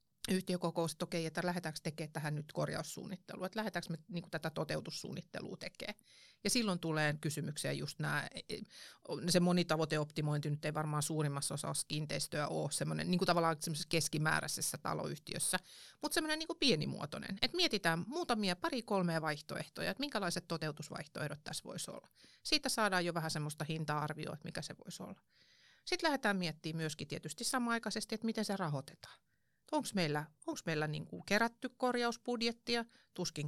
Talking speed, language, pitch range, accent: 140 wpm, Finnish, 165-230 Hz, native